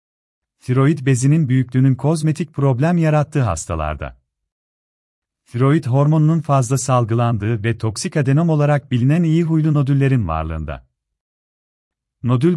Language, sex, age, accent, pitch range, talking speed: Turkish, male, 40-59, native, 85-145 Hz, 100 wpm